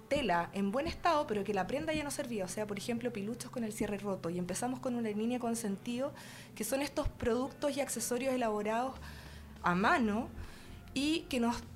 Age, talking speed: 20-39, 200 wpm